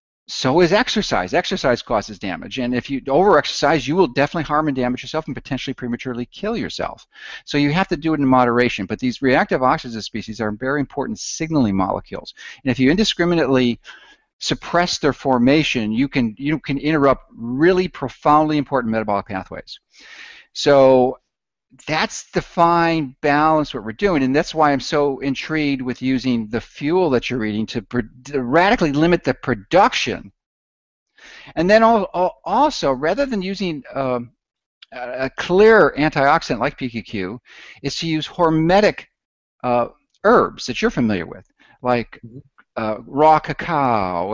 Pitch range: 120-155 Hz